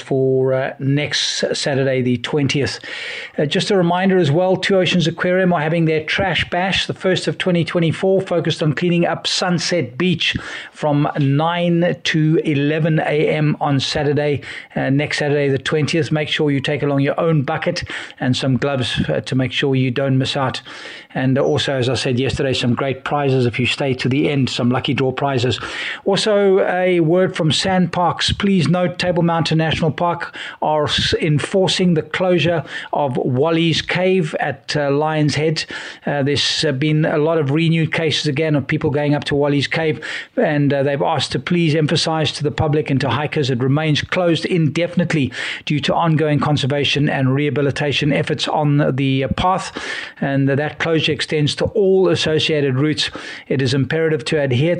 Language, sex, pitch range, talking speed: English, male, 140-165 Hz, 175 wpm